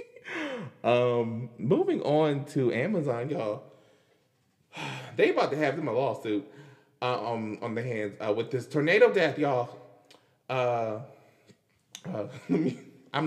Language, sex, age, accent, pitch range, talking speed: English, male, 20-39, American, 110-150 Hz, 125 wpm